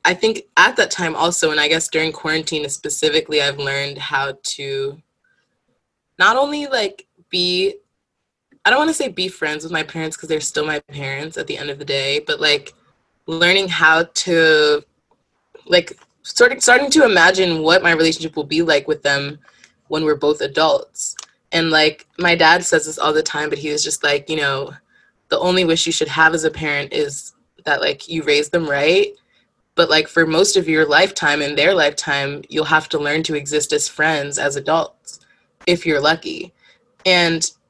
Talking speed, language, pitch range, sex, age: 190 wpm, English, 150-180 Hz, female, 20-39